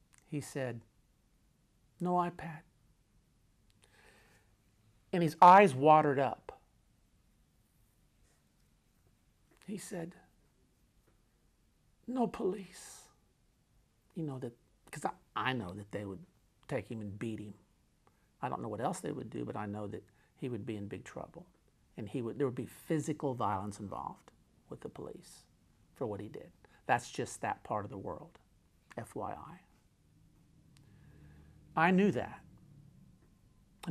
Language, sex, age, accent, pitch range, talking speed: English, male, 50-69, American, 110-185 Hz, 130 wpm